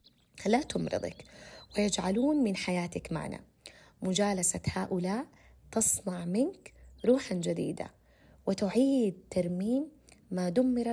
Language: Arabic